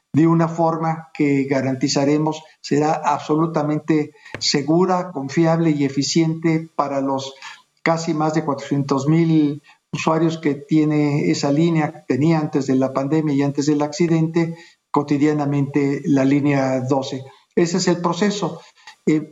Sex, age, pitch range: male, 50-69, 145-165 Hz